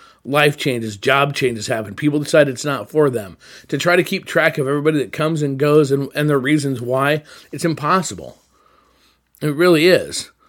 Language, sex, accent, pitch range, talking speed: English, male, American, 130-165 Hz, 185 wpm